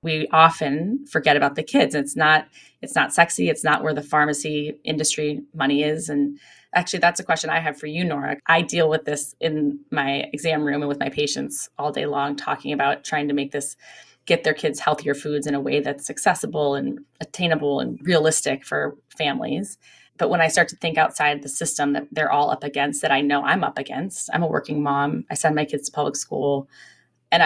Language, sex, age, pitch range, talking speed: English, female, 20-39, 145-165 Hz, 215 wpm